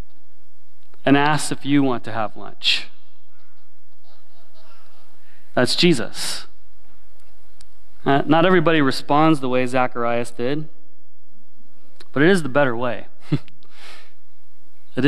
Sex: male